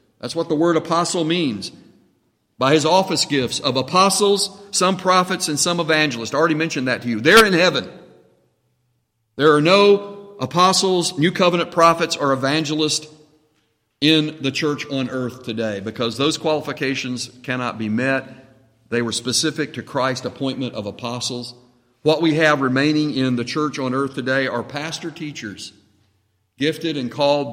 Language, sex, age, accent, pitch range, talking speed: English, male, 50-69, American, 130-165 Hz, 155 wpm